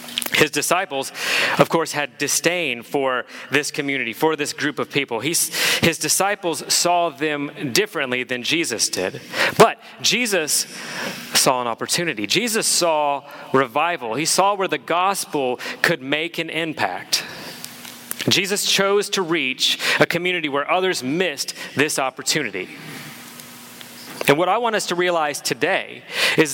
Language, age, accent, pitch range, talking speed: English, 30-49, American, 145-185 Hz, 135 wpm